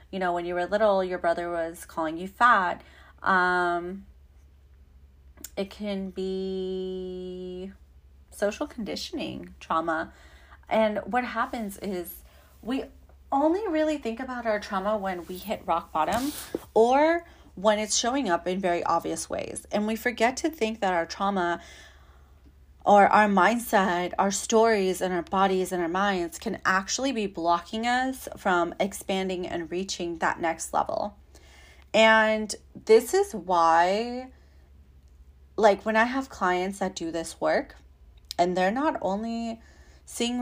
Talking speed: 140 wpm